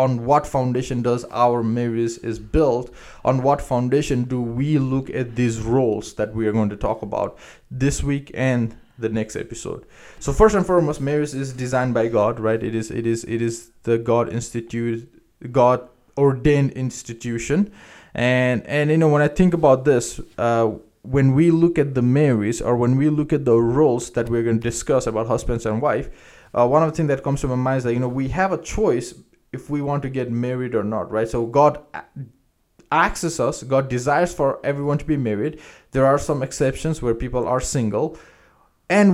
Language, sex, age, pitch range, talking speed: English, male, 20-39, 115-145 Hz, 200 wpm